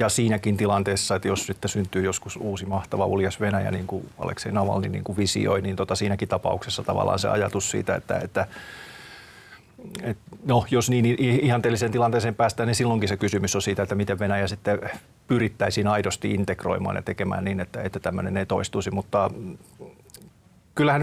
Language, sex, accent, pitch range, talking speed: Finnish, male, native, 95-110 Hz, 165 wpm